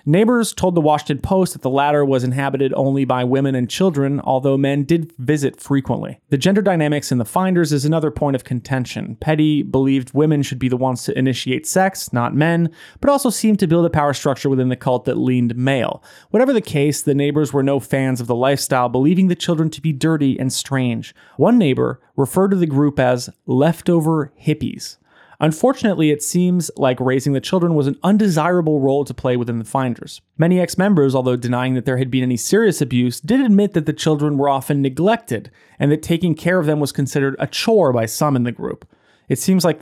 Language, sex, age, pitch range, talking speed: English, male, 30-49, 130-165 Hz, 210 wpm